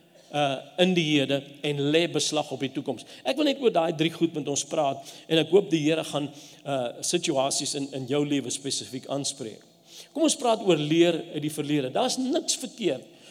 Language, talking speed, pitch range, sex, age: English, 200 wpm, 140-185 Hz, male, 50-69